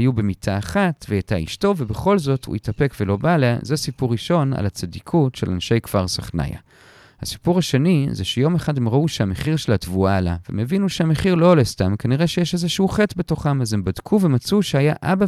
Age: 40-59